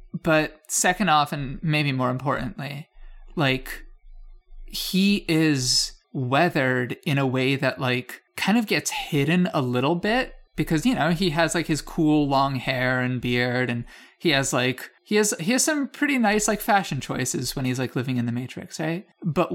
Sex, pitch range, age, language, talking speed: male, 130-165 Hz, 20-39, English, 180 wpm